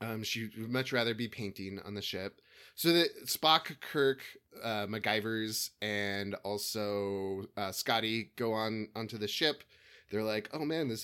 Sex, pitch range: male, 105-130 Hz